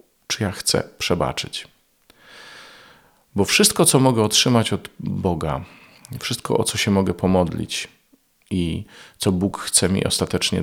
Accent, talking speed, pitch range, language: native, 130 wpm, 90-115 Hz, Polish